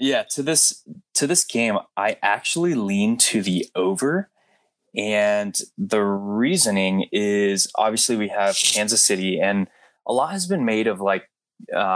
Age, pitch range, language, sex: 20-39, 95-115 Hz, English, male